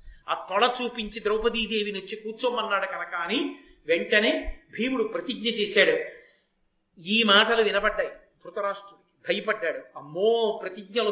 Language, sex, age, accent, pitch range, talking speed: Telugu, male, 50-69, native, 220-285 Hz, 95 wpm